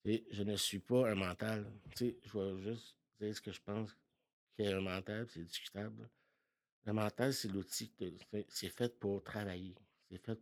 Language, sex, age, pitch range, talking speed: French, male, 60-79, 95-120 Hz, 195 wpm